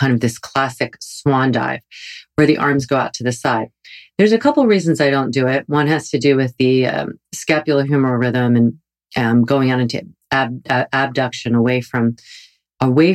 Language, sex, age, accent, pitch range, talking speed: English, female, 40-59, American, 120-145 Hz, 195 wpm